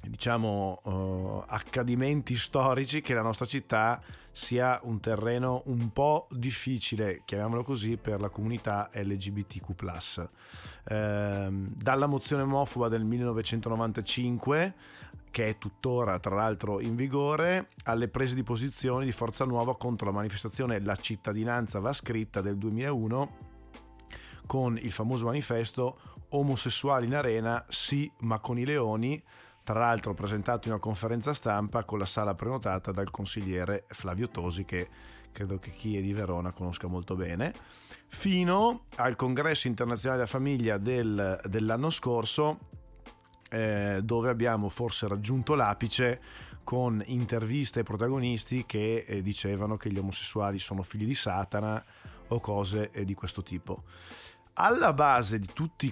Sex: male